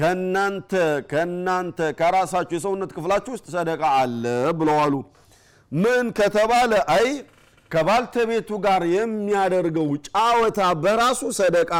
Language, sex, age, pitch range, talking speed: Amharic, male, 50-69, 160-210 Hz, 100 wpm